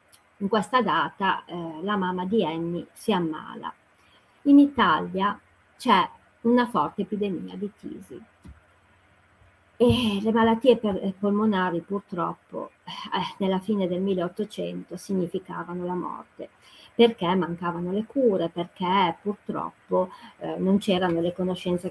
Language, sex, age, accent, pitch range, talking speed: Italian, female, 40-59, native, 175-240 Hz, 115 wpm